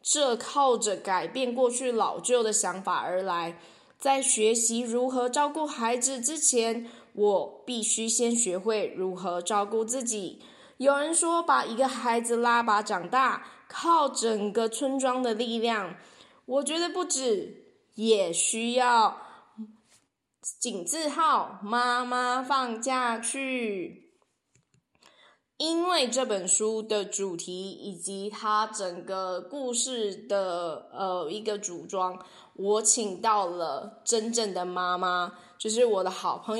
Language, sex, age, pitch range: Chinese, female, 20-39, 200-260 Hz